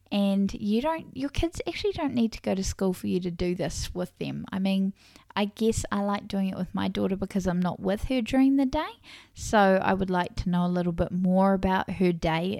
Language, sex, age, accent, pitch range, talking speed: English, female, 10-29, Australian, 175-205 Hz, 245 wpm